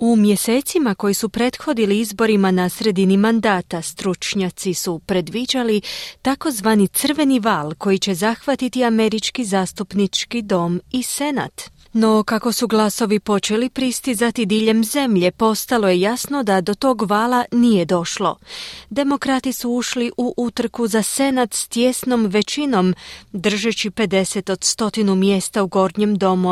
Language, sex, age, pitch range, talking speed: Croatian, female, 30-49, 195-245 Hz, 130 wpm